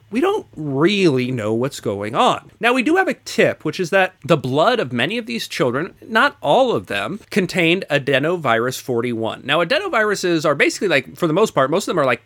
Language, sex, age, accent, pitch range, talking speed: English, male, 30-49, American, 125-175 Hz, 215 wpm